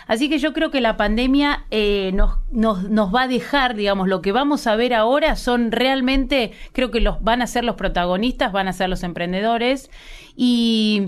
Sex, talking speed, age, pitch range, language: female, 200 wpm, 30-49, 190-255 Hz, Spanish